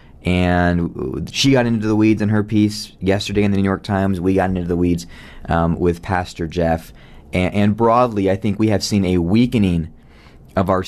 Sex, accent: male, American